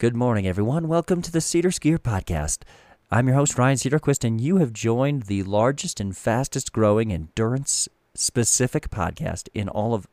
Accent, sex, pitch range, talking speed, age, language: American, male, 95-130 Hz, 170 wpm, 40-59, English